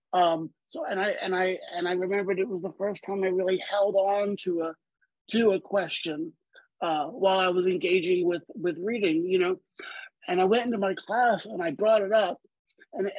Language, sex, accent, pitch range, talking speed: English, male, American, 185-230 Hz, 205 wpm